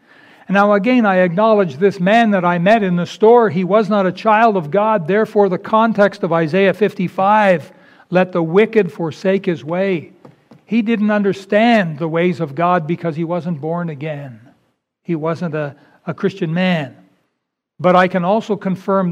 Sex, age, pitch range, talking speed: male, 60-79, 170-205 Hz, 170 wpm